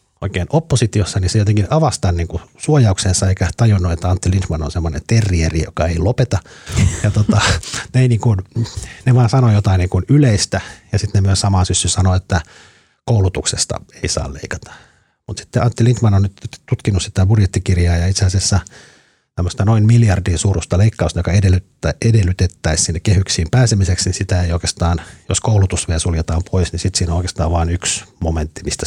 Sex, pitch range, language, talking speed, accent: male, 90-110 Hz, Finnish, 165 wpm, native